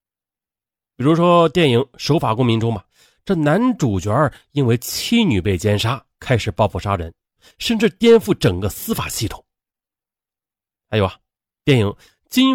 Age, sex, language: 30-49, male, Chinese